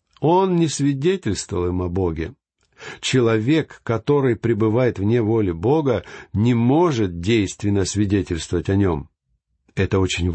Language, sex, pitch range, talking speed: Russian, male, 100-140 Hz, 115 wpm